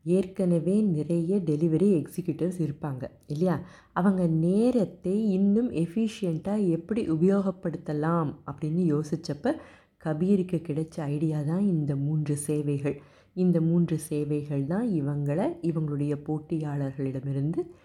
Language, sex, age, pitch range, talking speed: Tamil, female, 30-49, 155-195 Hz, 95 wpm